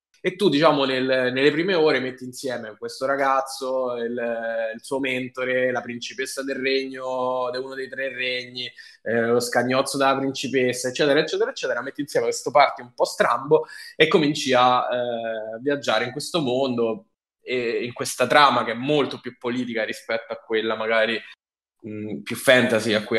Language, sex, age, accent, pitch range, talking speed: Italian, male, 10-29, native, 115-145 Hz, 170 wpm